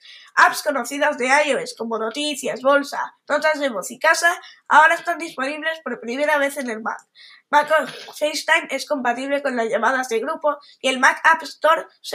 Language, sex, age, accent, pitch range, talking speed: Spanish, female, 20-39, Spanish, 265-325 Hz, 185 wpm